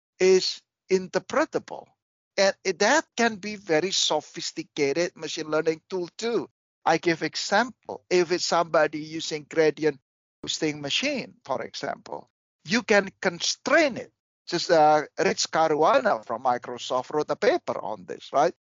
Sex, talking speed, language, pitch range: male, 130 wpm, English, 155-195 Hz